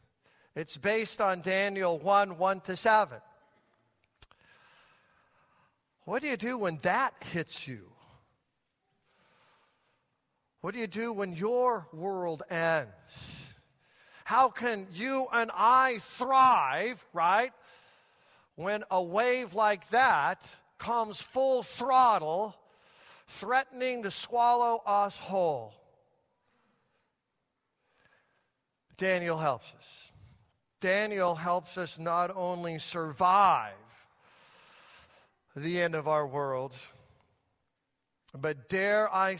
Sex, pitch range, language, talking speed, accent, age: male, 165-240 Hz, English, 95 wpm, American, 50-69